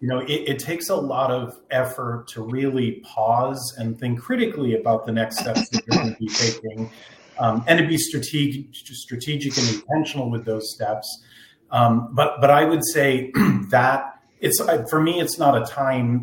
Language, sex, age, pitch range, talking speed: English, male, 40-59, 115-140 Hz, 180 wpm